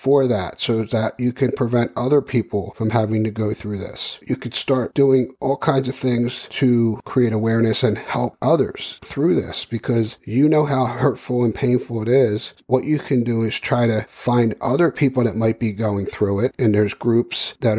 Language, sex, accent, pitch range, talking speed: English, male, American, 110-130 Hz, 200 wpm